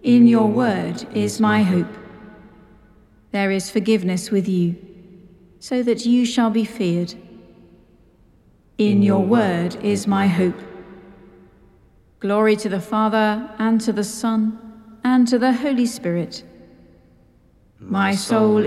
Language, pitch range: English, 195-230 Hz